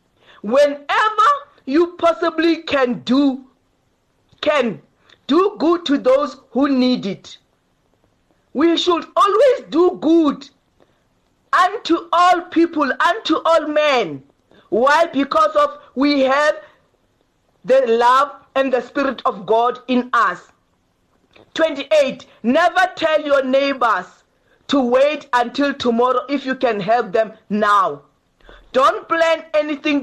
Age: 50-69